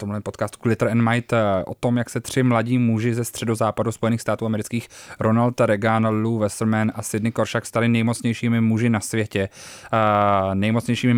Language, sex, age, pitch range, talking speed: Czech, male, 20-39, 110-120 Hz, 160 wpm